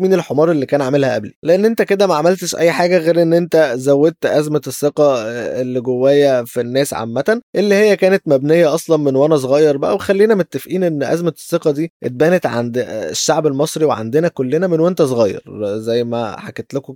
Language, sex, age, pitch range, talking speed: Arabic, male, 20-39, 135-175 Hz, 185 wpm